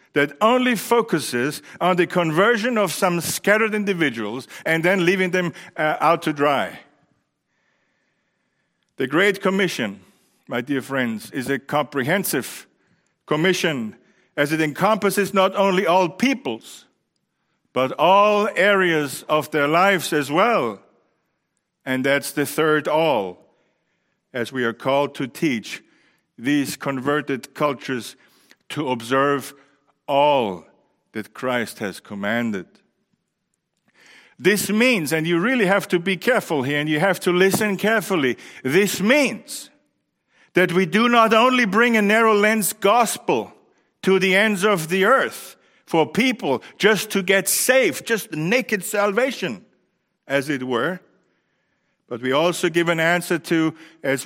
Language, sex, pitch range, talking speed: English, male, 145-200 Hz, 130 wpm